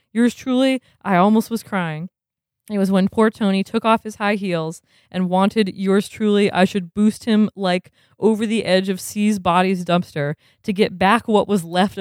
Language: English